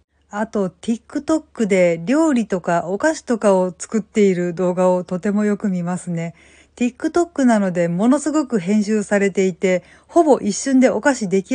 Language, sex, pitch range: Japanese, female, 190-240 Hz